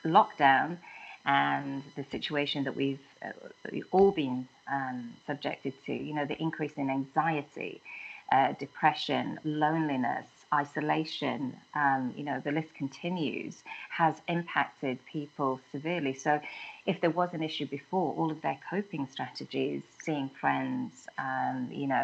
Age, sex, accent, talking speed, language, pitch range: 30-49, female, British, 135 wpm, English, 140-160 Hz